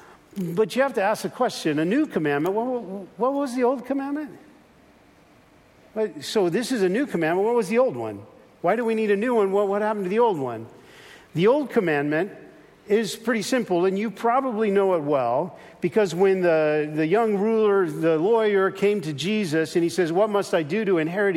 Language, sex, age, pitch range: English, male, 50-69, 170-220 Hz